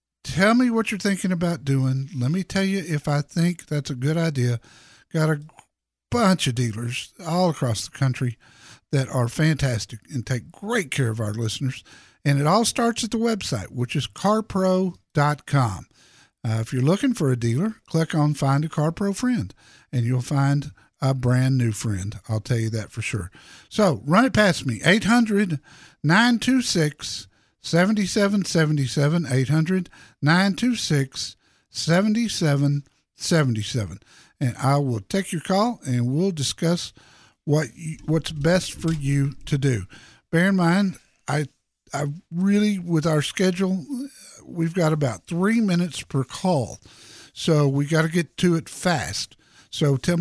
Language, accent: English, American